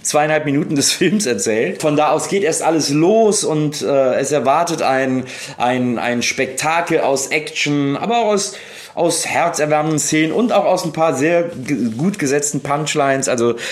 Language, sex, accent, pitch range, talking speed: German, male, German, 120-160 Hz, 170 wpm